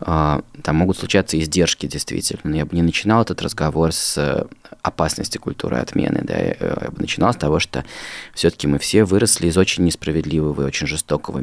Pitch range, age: 75-90 Hz, 20-39